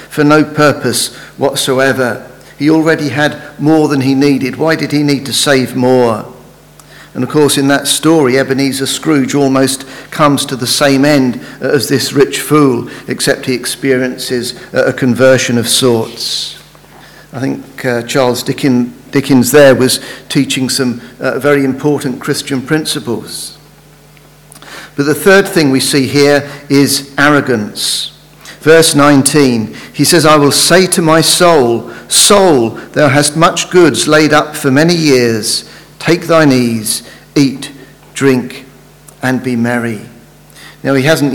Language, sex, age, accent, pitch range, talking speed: English, male, 50-69, British, 130-150 Hz, 140 wpm